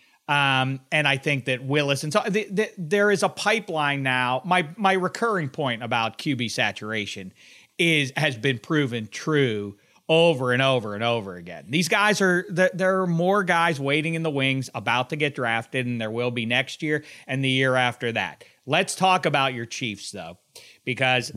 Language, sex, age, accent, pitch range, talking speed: English, male, 40-59, American, 125-175 Hz, 185 wpm